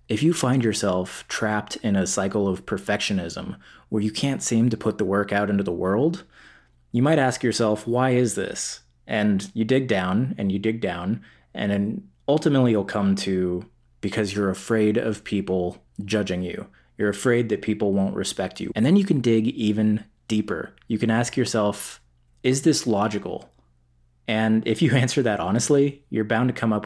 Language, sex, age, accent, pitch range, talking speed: English, male, 20-39, American, 100-125 Hz, 185 wpm